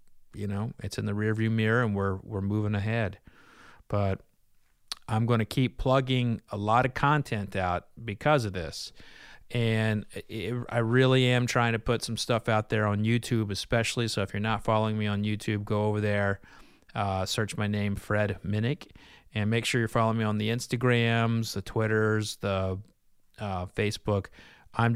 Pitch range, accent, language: 100-120 Hz, American, English